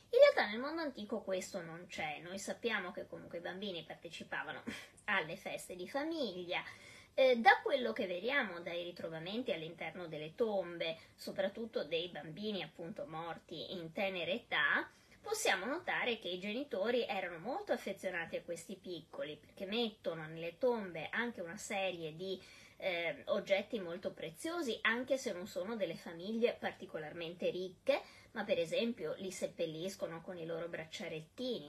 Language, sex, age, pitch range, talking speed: Italian, female, 20-39, 180-250 Hz, 145 wpm